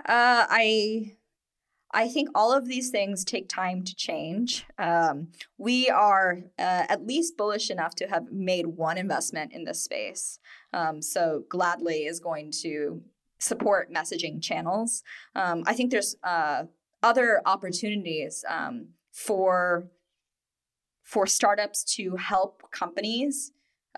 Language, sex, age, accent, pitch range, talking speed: English, female, 10-29, American, 170-215 Hz, 130 wpm